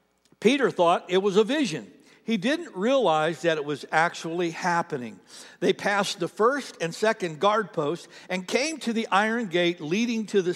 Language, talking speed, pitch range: English, 175 wpm, 170-230 Hz